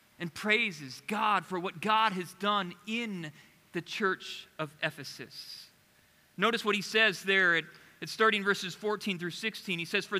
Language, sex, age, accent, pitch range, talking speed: English, male, 40-59, American, 180-225 Hz, 160 wpm